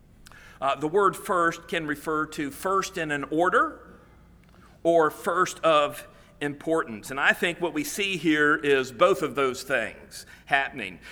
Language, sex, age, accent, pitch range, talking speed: English, male, 50-69, American, 145-180 Hz, 150 wpm